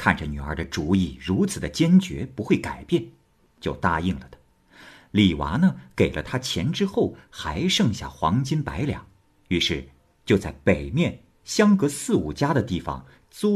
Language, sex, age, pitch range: Chinese, male, 50-69, 80-125 Hz